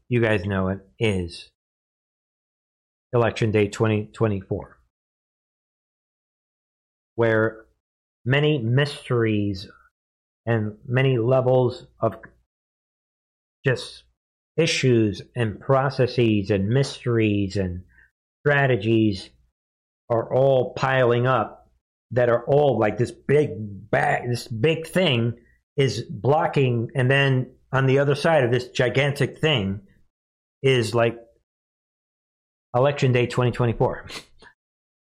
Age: 50-69